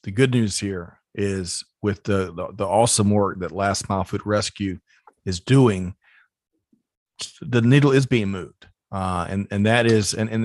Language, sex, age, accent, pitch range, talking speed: English, male, 40-59, American, 95-115 Hz, 170 wpm